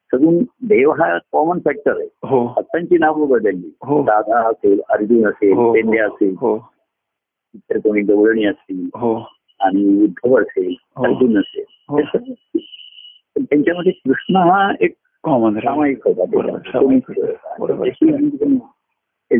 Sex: male